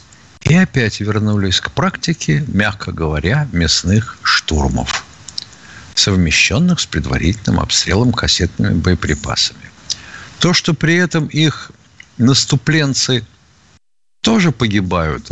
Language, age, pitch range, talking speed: Russian, 60-79, 95-135 Hz, 90 wpm